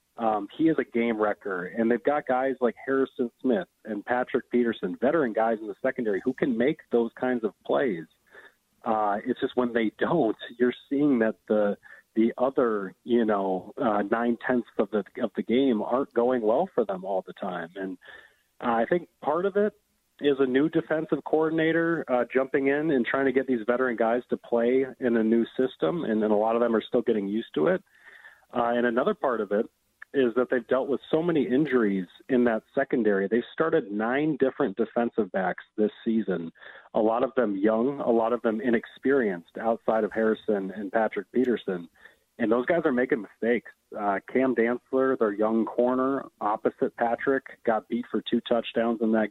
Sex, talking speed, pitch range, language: male, 195 wpm, 110-130 Hz, English